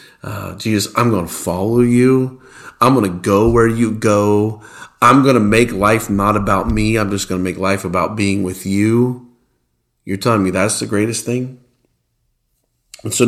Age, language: 50-69, English